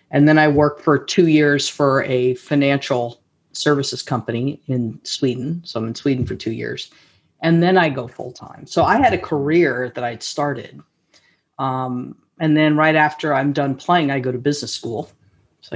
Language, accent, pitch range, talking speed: English, American, 135-160 Hz, 185 wpm